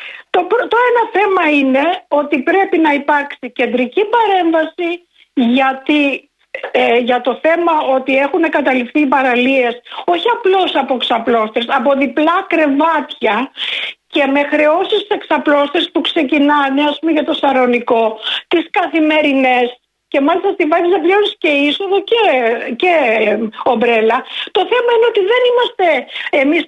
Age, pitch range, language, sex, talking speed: 50-69, 270-390 Hz, Greek, female, 130 wpm